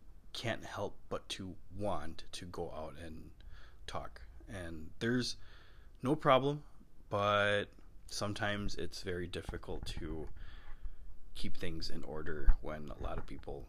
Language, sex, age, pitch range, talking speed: English, male, 20-39, 80-105 Hz, 125 wpm